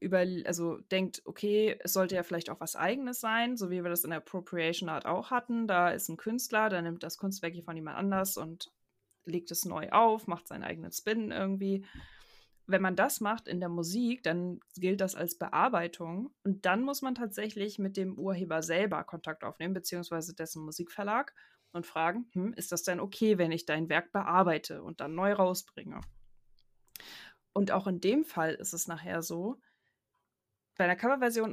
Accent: German